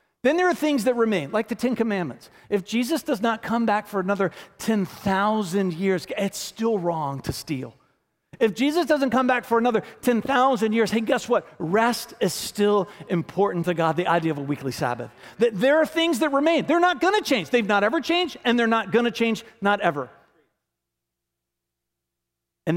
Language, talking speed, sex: English, 190 wpm, male